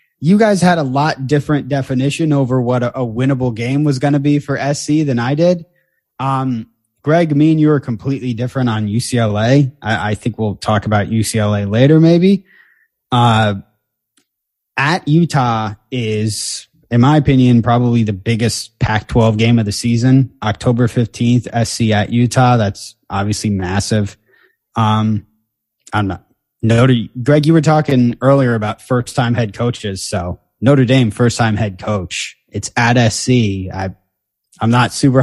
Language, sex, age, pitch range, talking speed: English, male, 20-39, 110-140 Hz, 155 wpm